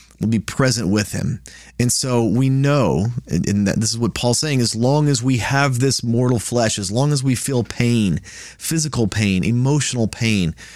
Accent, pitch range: American, 105-140 Hz